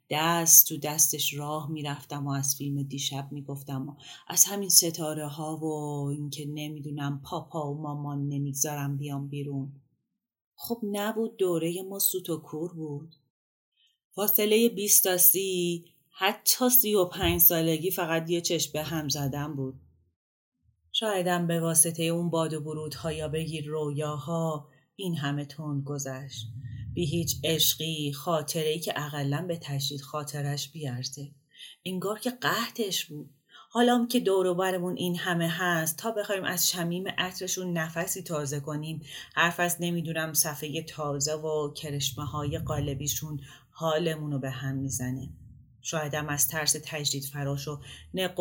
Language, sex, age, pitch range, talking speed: Persian, female, 30-49, 145-170 Hz, 140 wpm